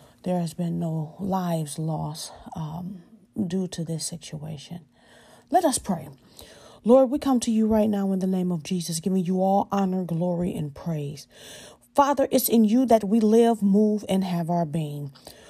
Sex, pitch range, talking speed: female, 190-250 Hz, 175 wpm